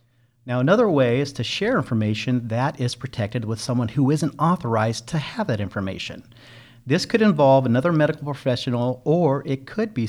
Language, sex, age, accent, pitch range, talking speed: English, male, 40-59, American, 120-150 Hz, 175 wpm